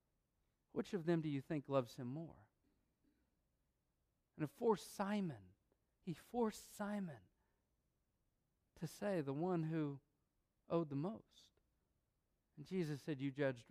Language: English